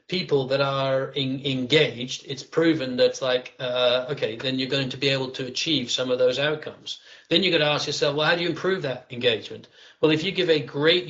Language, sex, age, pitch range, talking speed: English, male, 40-59, 135-160 Hz, 230 wpm